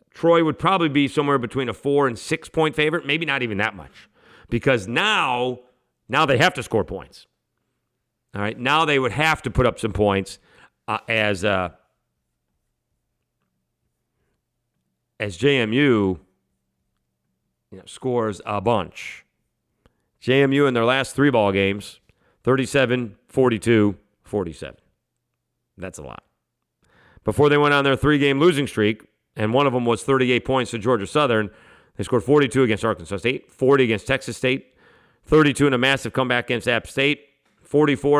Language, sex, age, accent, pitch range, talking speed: English, male, 40-59, American, 105-140 Hz, 150 wpm